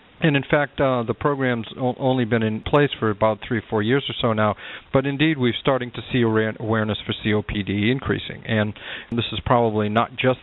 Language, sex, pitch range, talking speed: English, male, 100-120 Hz, 200 wpm